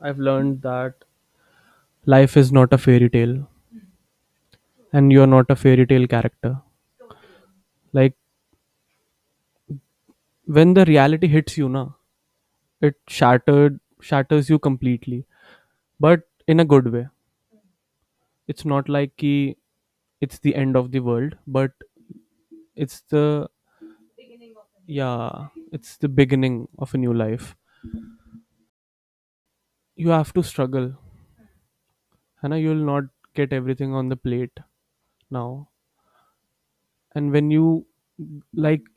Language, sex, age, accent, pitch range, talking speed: English, male, 20-39, Indian, 130-155 Hz, 110 wpm